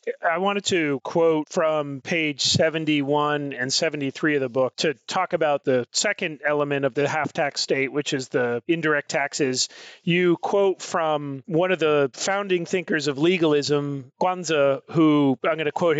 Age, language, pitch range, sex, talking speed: 40-59, English, 140-170 Hz, male, 165 wpm